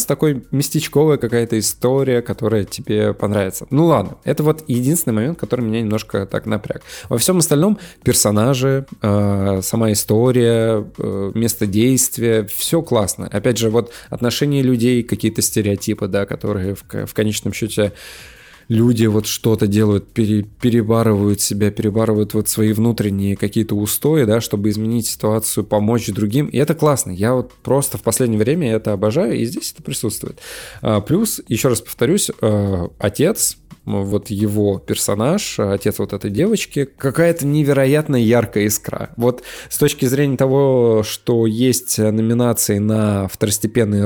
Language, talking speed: Russian, 140 wpm